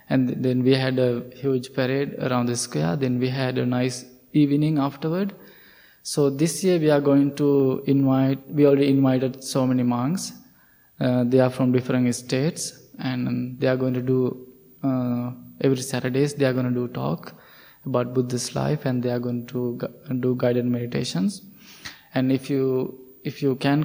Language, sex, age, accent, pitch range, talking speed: English, male, 20-39, Indian, 130-145 Hz, 175 wpm